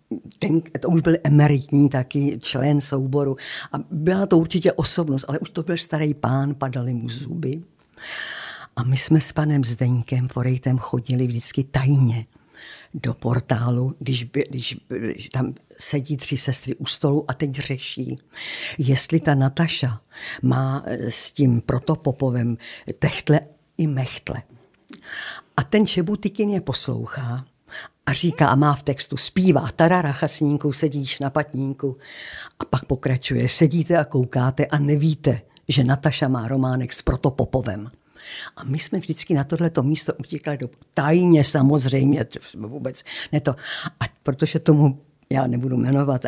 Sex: female